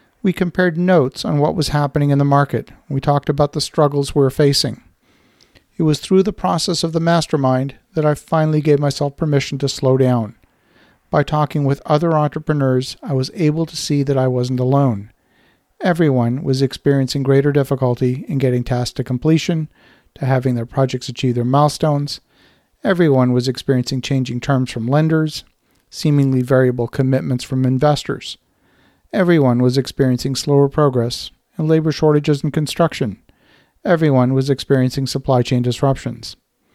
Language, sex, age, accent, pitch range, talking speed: English, male, 50-69, American, 130-155 Hz, 155 wpm